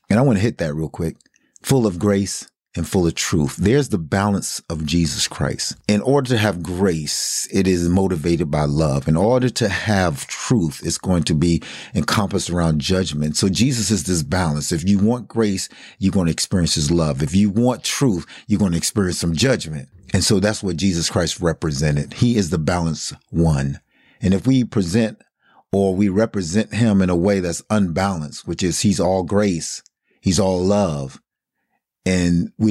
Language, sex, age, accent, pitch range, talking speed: English, male, 30-49, American, 85-105 Hz, 190 wpm